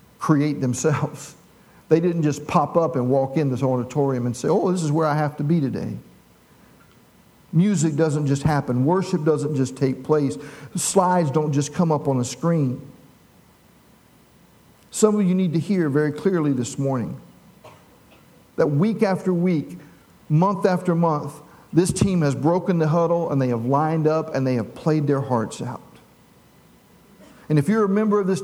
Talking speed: 175 wpm